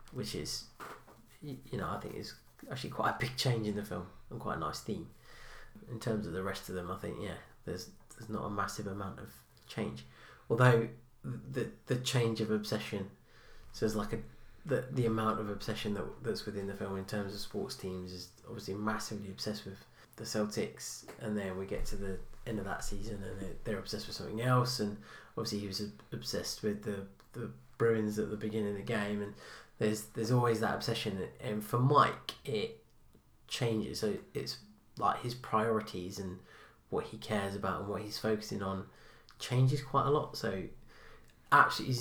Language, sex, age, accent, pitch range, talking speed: English, male, 20-39, British, 100-115 Hz, 190 wpm